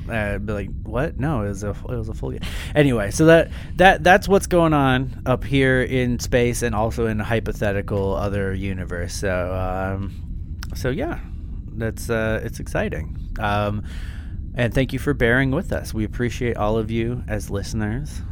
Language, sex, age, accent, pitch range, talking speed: English, male, 30-49, American, 95-120 Hz, 180 wpm